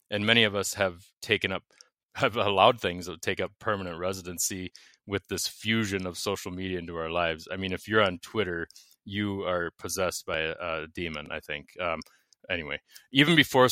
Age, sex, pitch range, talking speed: 20-39, male, 90-105 Hz, 190 wpm